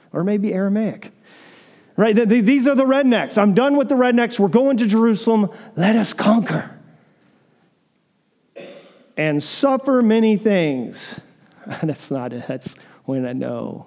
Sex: male